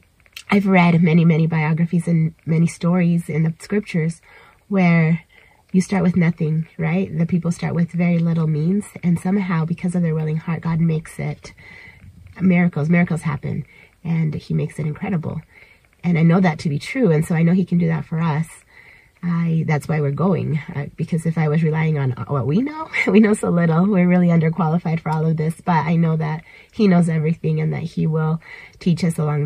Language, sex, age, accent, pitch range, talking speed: English, female, 30-49, American, 155-180 Hz, 200 wpm